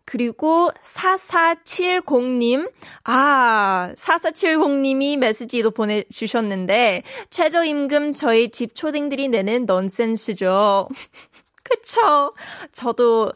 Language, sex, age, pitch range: Korean, female, 20-39, 225-290 Hz